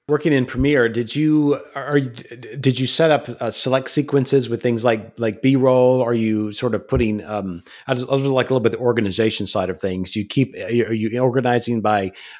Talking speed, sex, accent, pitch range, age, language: 220 wpm, male, American, 110-135 Hz, 40-59, English